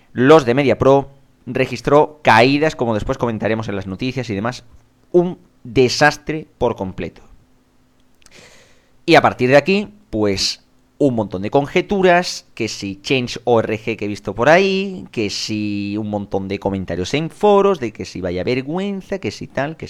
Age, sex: 30-49, male